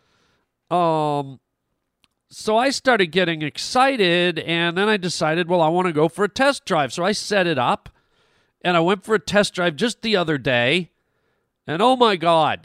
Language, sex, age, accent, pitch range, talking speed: English, male, 40-59, American, 150-205 Hz, 185 wpm